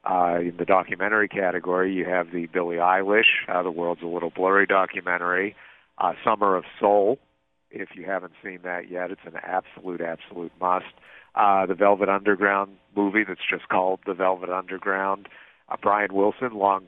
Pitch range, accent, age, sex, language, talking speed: 85-100 Hz, American, 50-69, male, English, 165 wpm